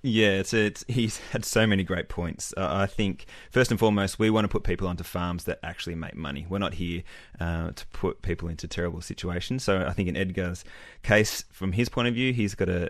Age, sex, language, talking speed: 20-39, male, English, 235 wpm